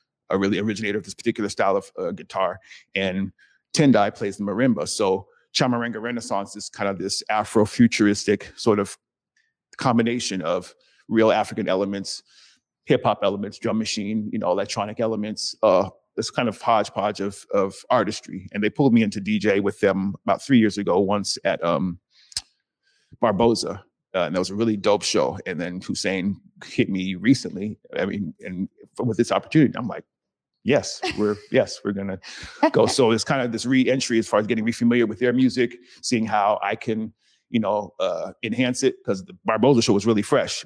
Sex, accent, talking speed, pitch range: male, American, 185 wpm, 100-115 Hz